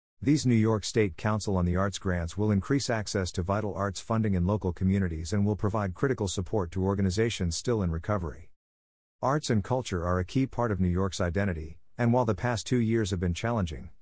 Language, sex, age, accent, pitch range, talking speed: English, male, 50-69, American, 90-110 Hz, 210 wpm